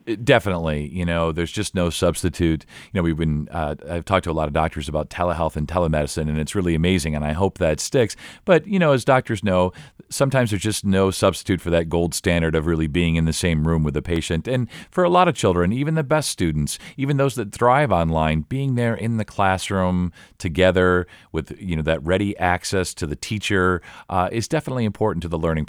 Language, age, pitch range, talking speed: English, 40-59, 80-115 Hz, 220 wpm